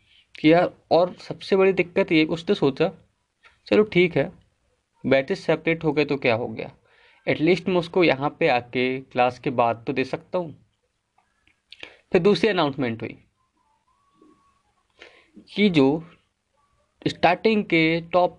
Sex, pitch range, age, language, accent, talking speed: male, 125-175 Hz, 20-39, Hindi, native, 135 wpm